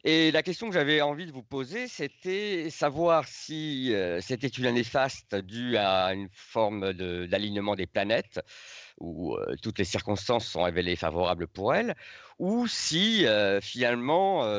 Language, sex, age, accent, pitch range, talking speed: French, male, 50-69, French, 100-140 Hz, 160 wpm